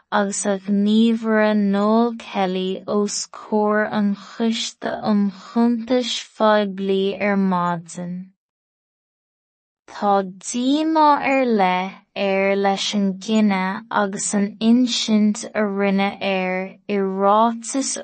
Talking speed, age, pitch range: 95 wpm, 20-39, 195-225 Hz